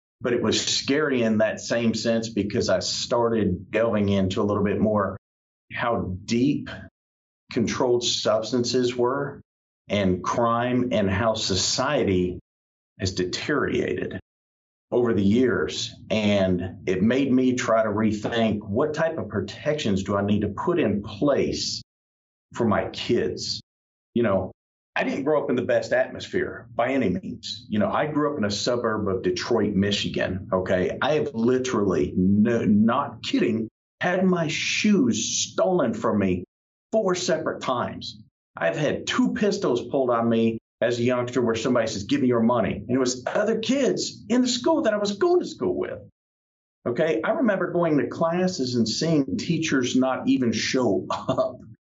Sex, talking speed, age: male, 160 wpm, 40-59